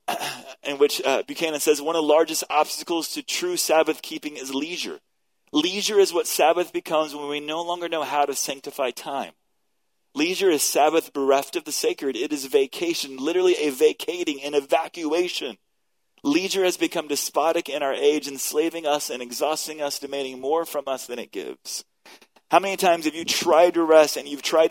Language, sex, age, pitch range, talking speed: English, male, 30-49, 140-205 Hz, 180 wpm